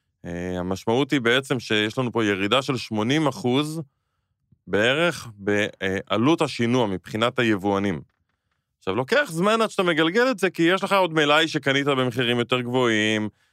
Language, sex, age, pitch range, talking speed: Hebrew, male, 20-39, 105-140 Hz, 140 wpm